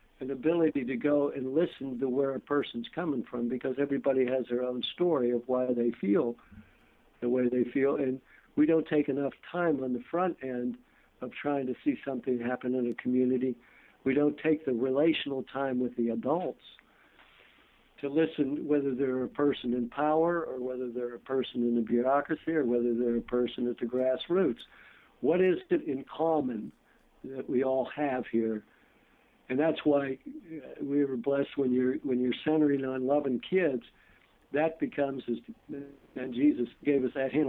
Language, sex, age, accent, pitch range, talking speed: English, male, 60-79, American, 125-145 Hz, 175 wpm